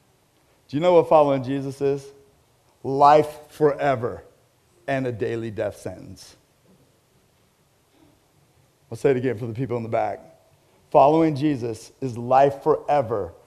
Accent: American